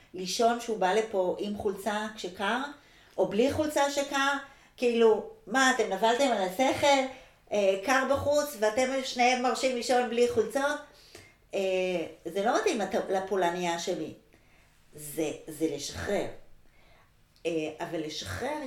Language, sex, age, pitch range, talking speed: Hebrew, female, 50-69, 170-230 Hz, 115 wpm